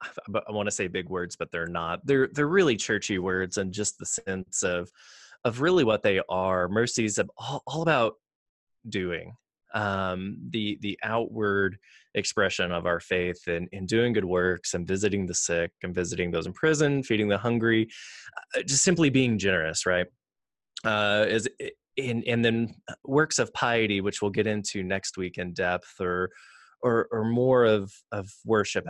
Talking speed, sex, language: 175 wpm, male, English